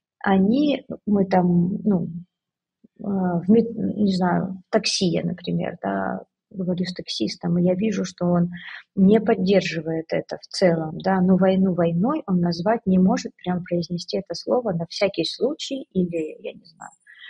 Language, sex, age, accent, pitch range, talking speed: Russian, female, 30-49, native, 180-220 Hz, 150 wpm